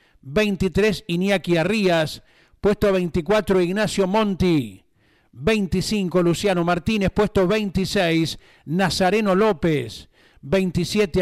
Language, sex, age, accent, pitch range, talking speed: Spanish, male, 50-69, Argentinian, 170-205 Hz, 80 wpm